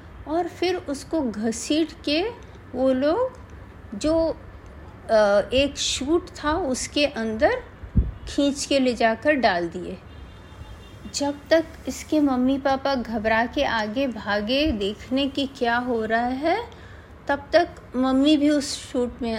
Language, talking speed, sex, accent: Hindi, 125 wpm, female, native